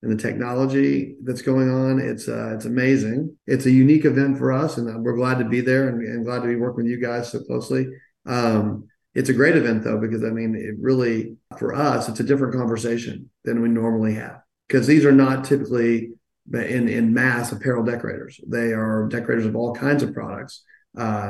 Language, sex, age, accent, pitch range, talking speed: English, male, 40-59, American, 115-130 Hz, 205 wpm